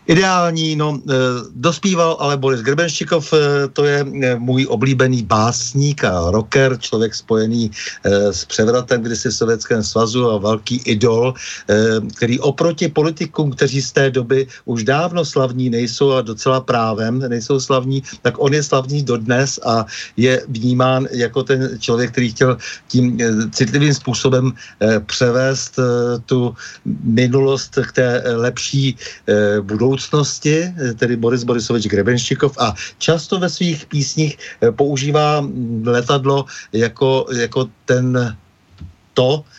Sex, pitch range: male, 115-140 Hz